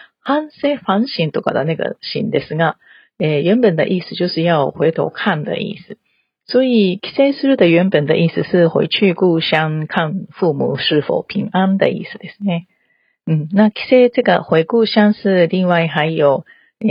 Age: 40-59